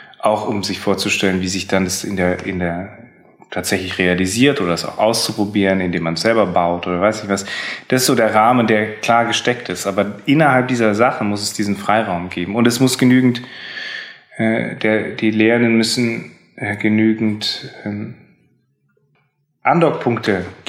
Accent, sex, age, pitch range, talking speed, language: German, male, 30-49, 100-115 Hz, 170 wpm, German